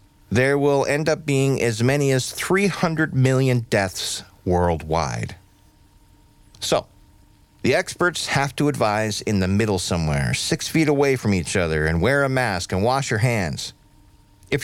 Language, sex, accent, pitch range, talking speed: English, male, American, 100-125 Hz, 150 wpm